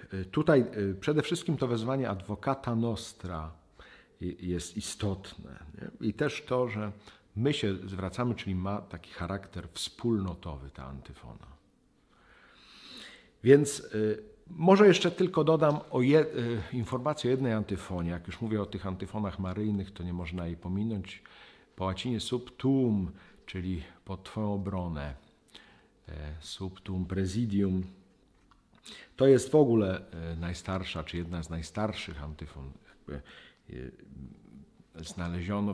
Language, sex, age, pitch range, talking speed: Polish, male, 50-69, 85-110 Hz, 105 wpm